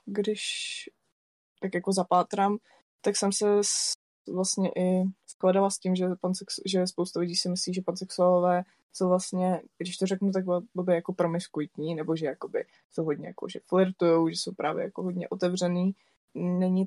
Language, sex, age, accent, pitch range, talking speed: Czech, female, 20-39, native, 170-190 Hz, 165 wpm